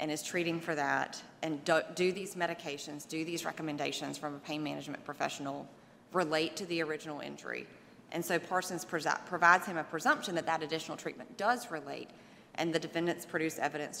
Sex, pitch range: female, 150-175 Hz